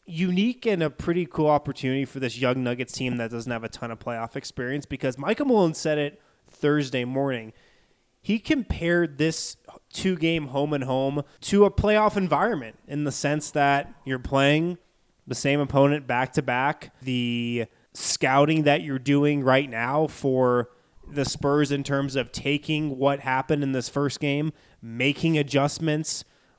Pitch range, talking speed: 125-145 Hz, 165 wpm